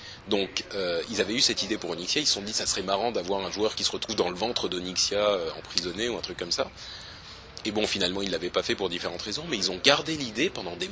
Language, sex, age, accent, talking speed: French, male, 30-49, French, 275 wpm